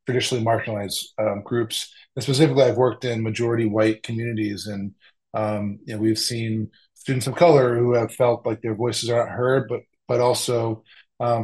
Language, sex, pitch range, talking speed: English, male, 110-130 Hz, 170 wpm